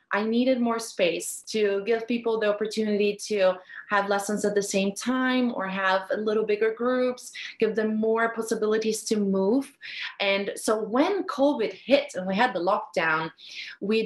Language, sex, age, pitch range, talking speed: English, female, 20-39, 195-245 Hz, 165 wpm